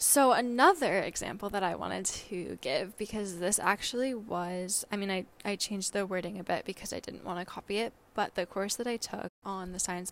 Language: English